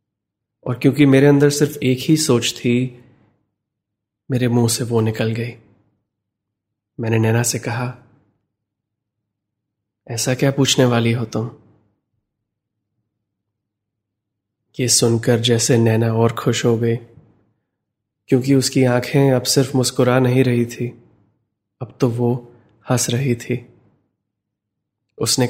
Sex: male